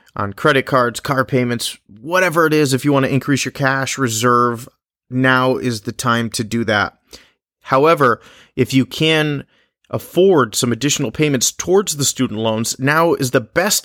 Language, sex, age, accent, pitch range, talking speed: English, male, 30-49, American, 110-135 Hz, 170 wpm